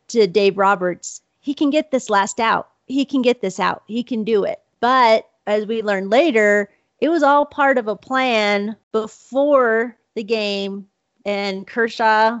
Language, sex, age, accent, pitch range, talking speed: English, female, 40-59, American, 200-235 Hz, 170 wpm